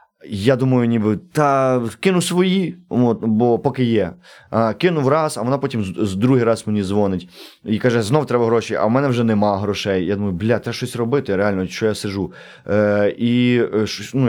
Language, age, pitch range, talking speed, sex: Ukrainian, 20-39, 110-145 Hz, 190 wpm, male